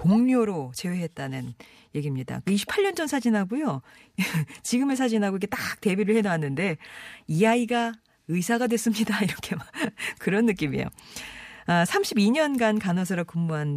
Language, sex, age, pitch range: Korean, female, 40-59, 155-225 Hz